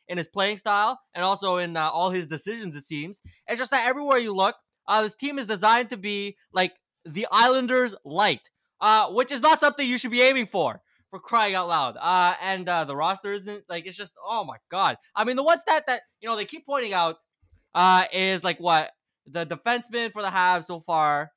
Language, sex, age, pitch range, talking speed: English, male, 20-39, 175-245 Hz, 220 wpm